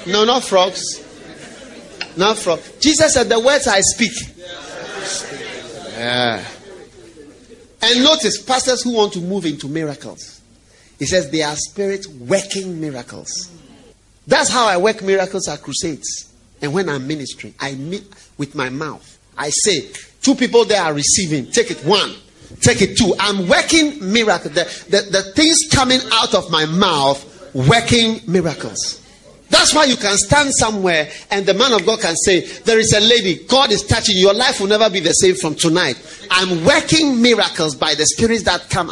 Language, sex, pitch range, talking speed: English, male, 140-210 Hz, 165 wpm